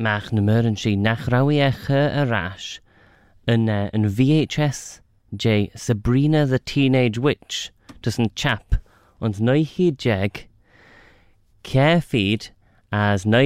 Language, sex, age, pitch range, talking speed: English, male, 20-39, 100-120 Hz, 70 wpm